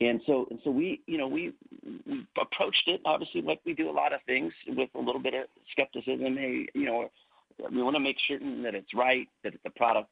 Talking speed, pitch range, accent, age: 230 wpm, 110-150 Hz, American, 40-59